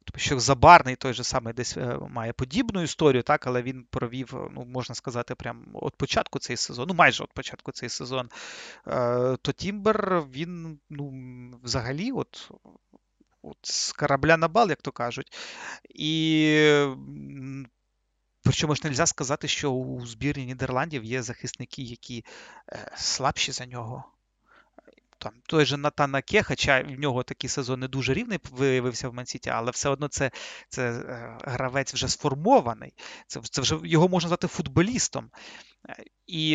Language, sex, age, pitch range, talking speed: Ukrainian, male, 30-49, 125-165 Hz, 145 wpm